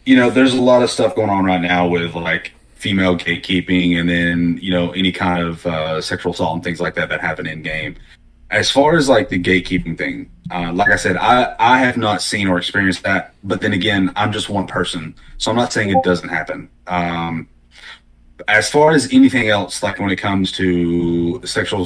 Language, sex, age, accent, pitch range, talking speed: English, male, 30-49, American, 85-95 Hz, 210 wpm